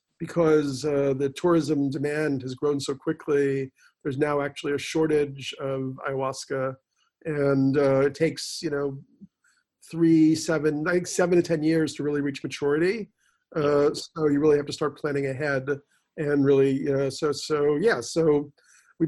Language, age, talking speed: English, 40-59, 160 wpm